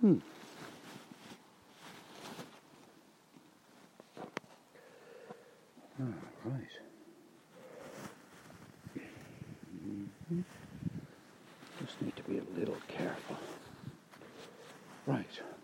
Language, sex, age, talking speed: English, male, 60-79, 45 wpm